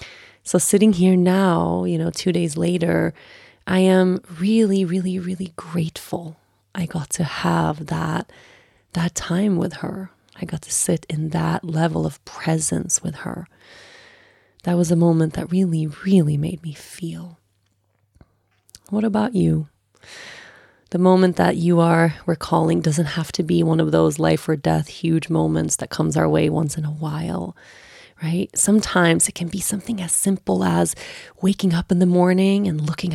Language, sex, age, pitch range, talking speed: English, female, 20-39, 155-185 Hz, 165 wpm